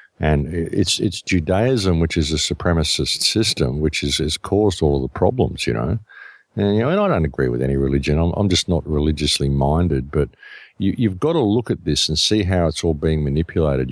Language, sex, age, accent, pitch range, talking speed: English, male, 50-69, Australian, 75-100 Hz, 210 wpm